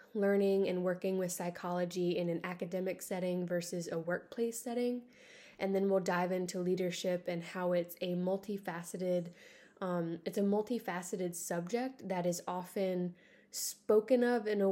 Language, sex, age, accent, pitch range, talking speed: English, female, 20-39, American, 175-200 Hz, 145 wpm